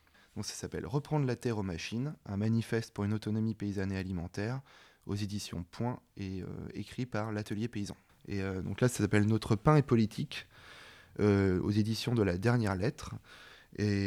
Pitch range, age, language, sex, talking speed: 95-115 Hz, 20-39, French, male, 175 wpm